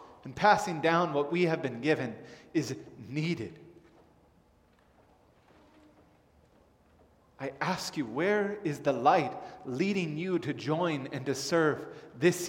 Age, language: 30-49, English